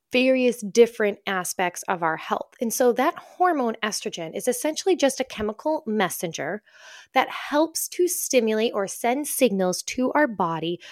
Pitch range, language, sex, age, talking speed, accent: 195-255 Hz, English, female, 20-39, 150 wpm, American